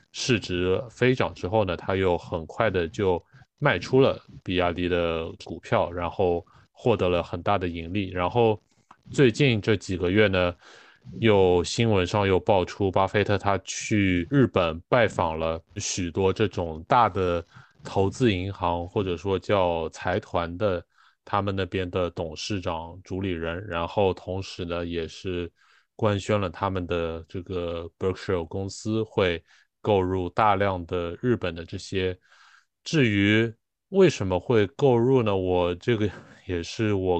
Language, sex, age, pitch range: Chinese, male, 20-39, 90-110 Hz